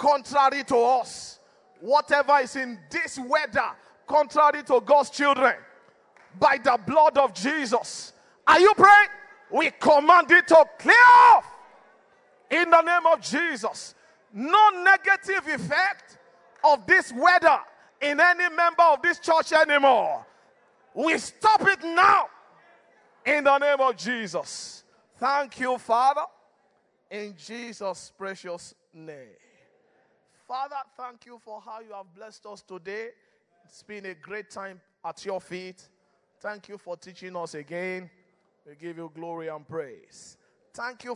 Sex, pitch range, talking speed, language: male, 200-295 Hz, 135 wpm, English